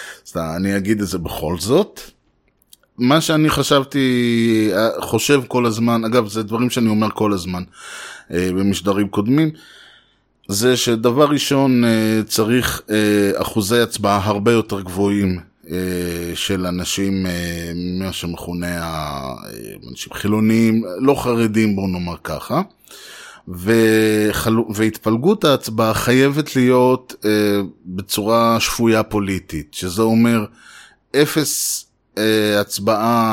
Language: Hebrew